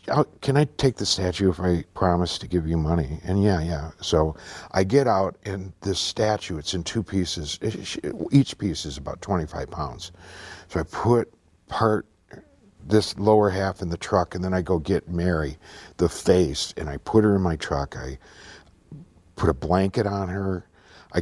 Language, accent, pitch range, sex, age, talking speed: English, American, 85-115 Hz, male, 50-69, 180 wpm